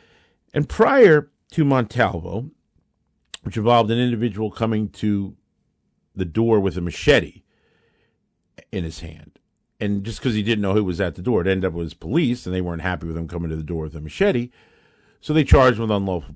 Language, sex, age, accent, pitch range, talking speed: English, male, 50-69, American, 90-130 Hz, 195 wpm